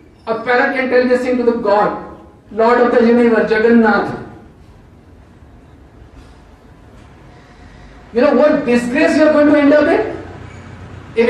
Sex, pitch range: male, 165-245 Hz